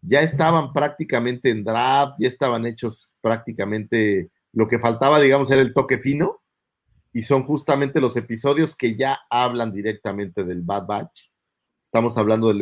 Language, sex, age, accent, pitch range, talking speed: Spanish, male, 40-59, Mexican, 115-140 Hz, 150 wpm